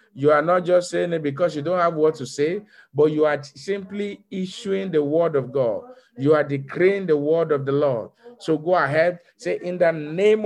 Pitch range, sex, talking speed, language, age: 155-195 Hz, male, 210 wpm, English, 50-69